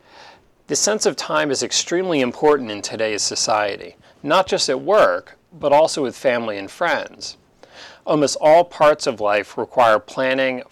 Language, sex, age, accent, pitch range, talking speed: English, male, 40-59, American, 110-140 Hz, 150 wpm